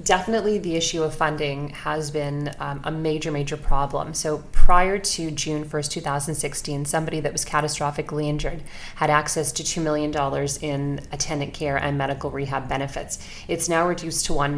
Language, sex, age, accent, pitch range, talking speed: English, female, 30-49, American, 140-165 Hz, 165 wpm